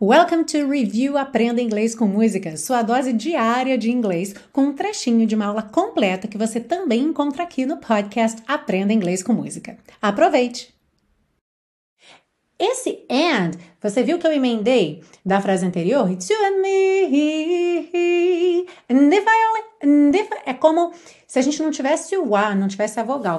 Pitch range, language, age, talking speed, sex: 205-290 Hz, Portuguese, 30-49, 165 wpm, female